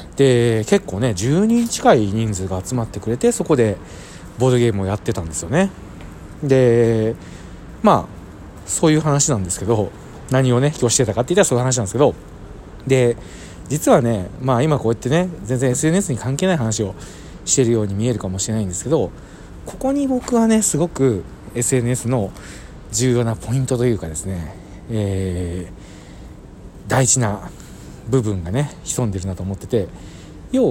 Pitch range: 95-145 Hz